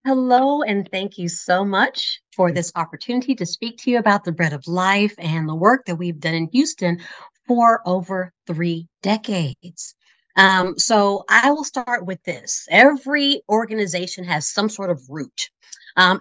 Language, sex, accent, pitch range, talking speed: English, female, American, 175-230 Hz, 165 wpm